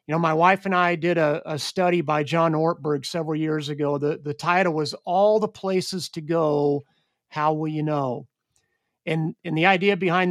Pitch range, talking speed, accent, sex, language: 155-180 Hz, 200 wpm, American, male, English